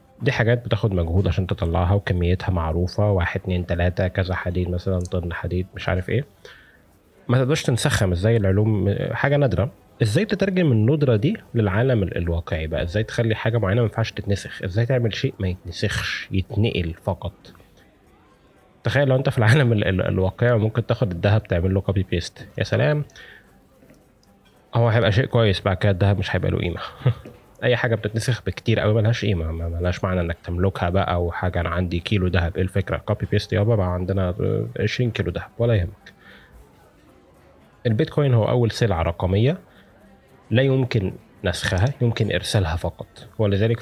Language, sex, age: Arabic, male, 20-39